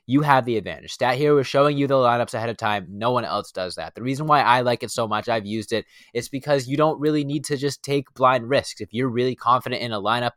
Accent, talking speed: American, 280 wpm